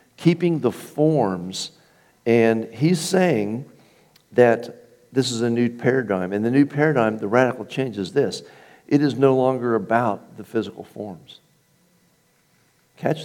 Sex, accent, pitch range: male, American, 95-125 Hz